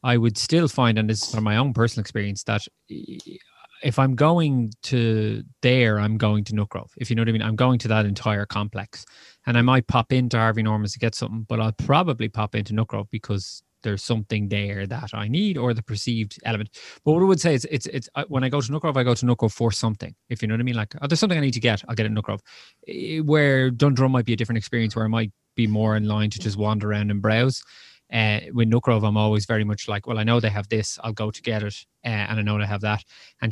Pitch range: 105-130 Hz